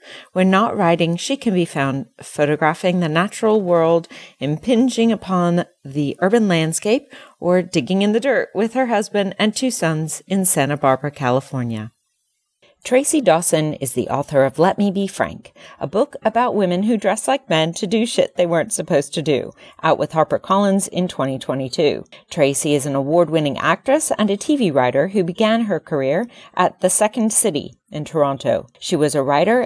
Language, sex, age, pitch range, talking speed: English, female, 40-59, 155-220 Hz, 170 wpm